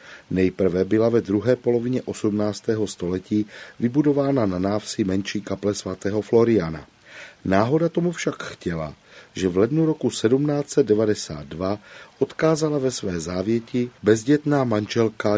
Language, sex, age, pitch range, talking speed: Czech, male, 40-59, 95-120 Hz, 115 wpm